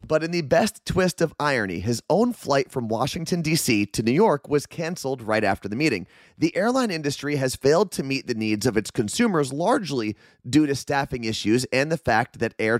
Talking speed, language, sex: 205 wpm, English, male